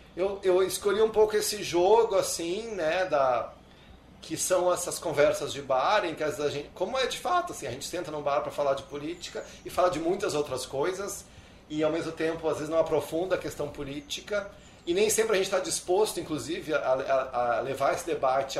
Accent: Brazilian